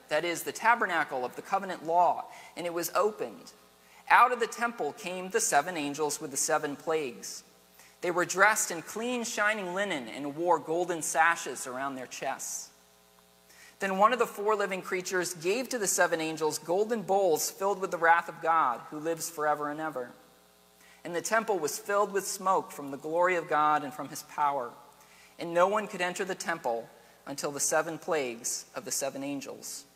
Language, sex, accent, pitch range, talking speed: English, male, American, 130-185 Hz, 190 wpm